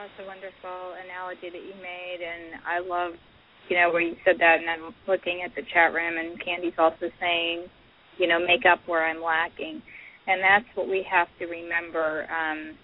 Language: English